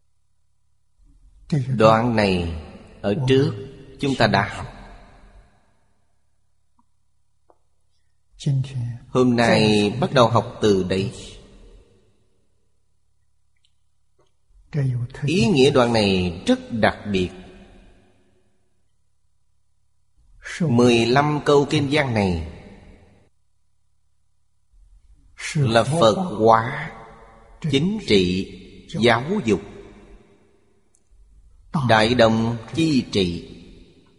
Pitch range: 95-125 Hz